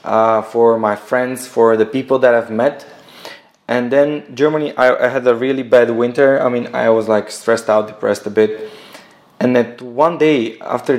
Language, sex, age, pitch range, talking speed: Bulgarian, male, 20-39, 115-145 Hz, 190 wpm